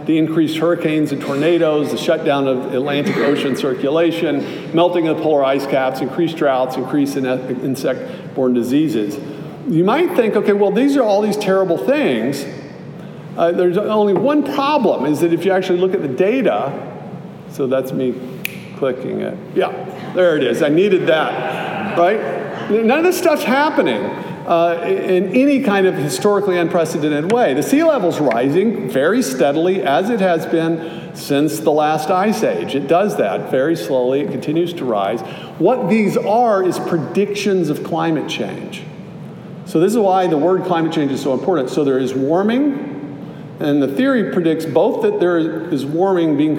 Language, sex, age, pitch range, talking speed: English, male, 50-69, 150-190 Hz, 165 wpm